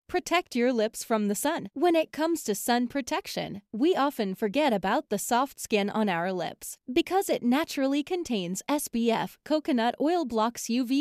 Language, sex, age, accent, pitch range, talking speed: English, female, 20-39, American, 210-305 Hz, 170 wpm